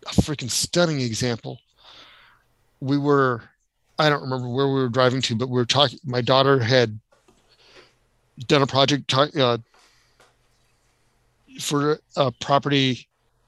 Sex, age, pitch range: male, 40-59, 120-145 Hz